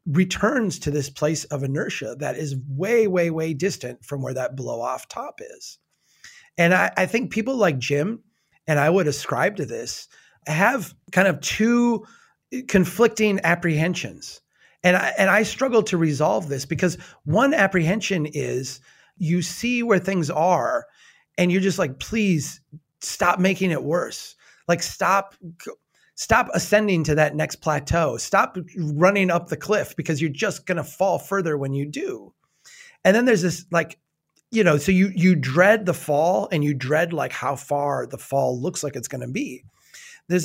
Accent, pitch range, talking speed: American, 150-195 Hz, 170 wpm